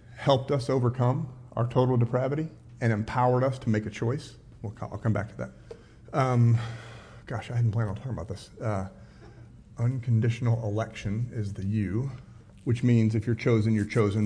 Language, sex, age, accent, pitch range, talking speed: English, male, 40-59, American, 110-125 Hz, 170 wpm